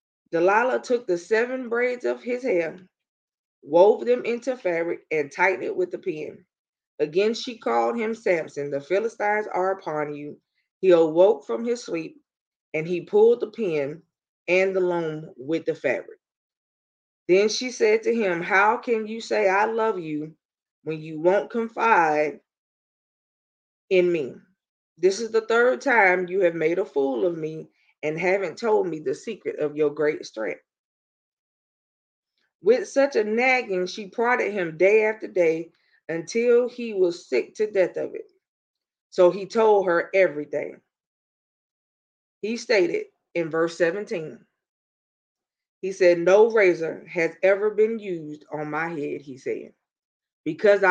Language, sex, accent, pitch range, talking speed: English, female, American, 165-235 Hz, 150 wpm